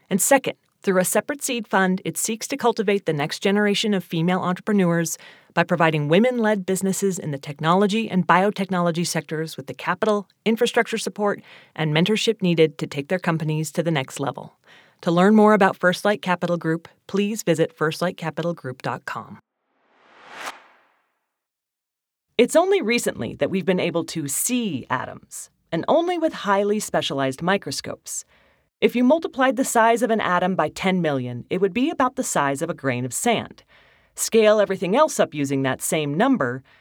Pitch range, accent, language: 155-230 Hz, American, English